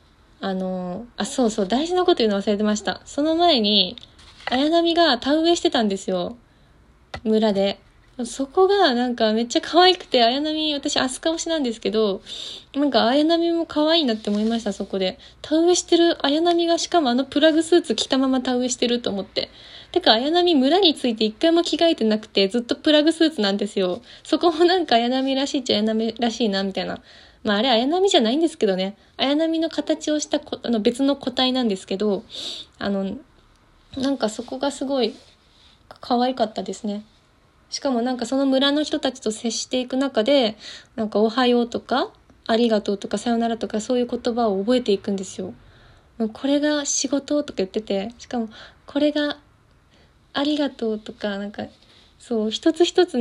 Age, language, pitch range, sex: 20-39, Japanese, 220-305 Hz, female